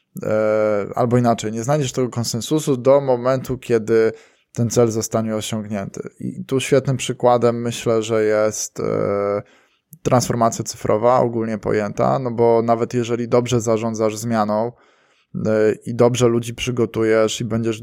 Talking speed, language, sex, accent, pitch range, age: 125 wpm, Polish, male, native, 110-125 Hz, 20-39